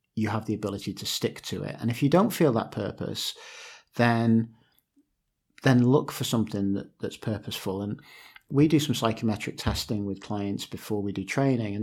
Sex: male